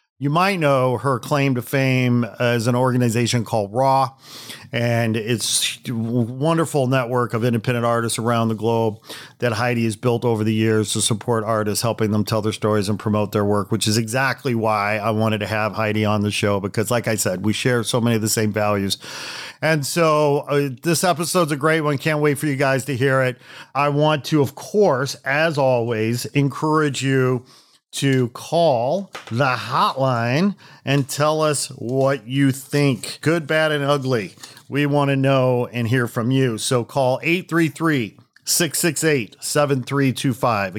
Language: English